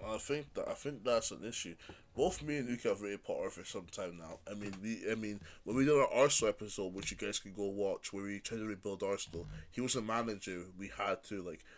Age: 20-39